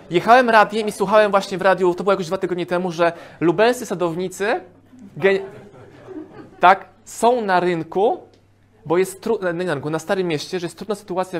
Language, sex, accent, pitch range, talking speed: Polish, male, native, 145-195 Hz, 175 wpm